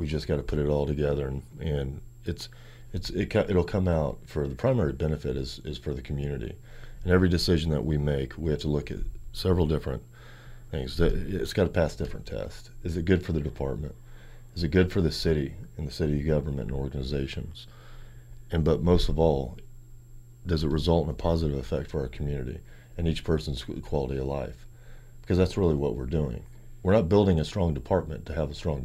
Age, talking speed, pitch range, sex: 40-59, 210 wpm, 75-120 Hz, male